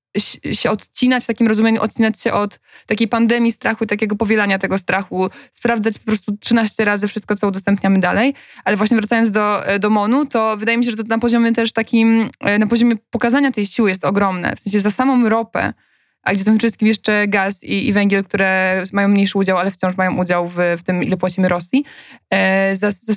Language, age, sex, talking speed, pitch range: Polish, 20-39, female, 200 wpm, 200-230 Hz